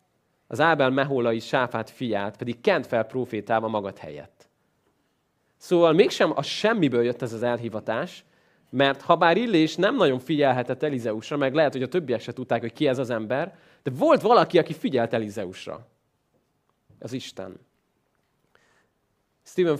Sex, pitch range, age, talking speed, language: male, 115-150 Hz, 30-49, 145 wpm, Hungarian